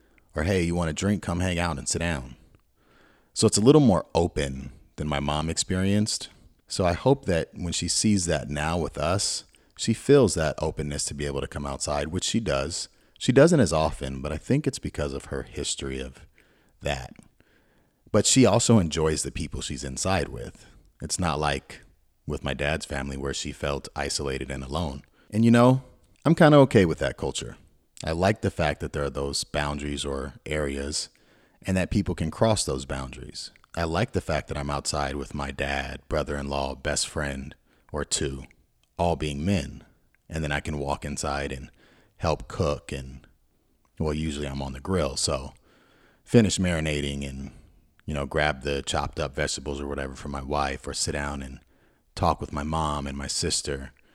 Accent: American